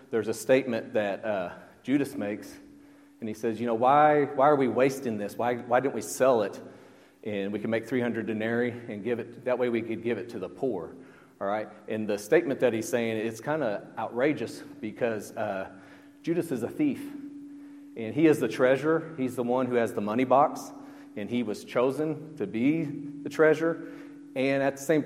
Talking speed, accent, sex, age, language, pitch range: 205 wpm, American, male, 40-59, English, 110-155 Hz